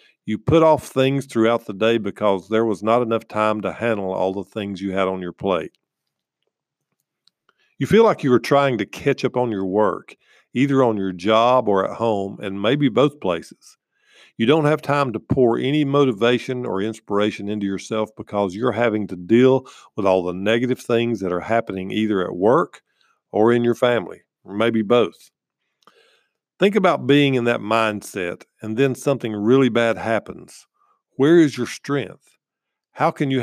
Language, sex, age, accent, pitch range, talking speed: English, male, 50-69, American, 105-135 Hz, 180 wpm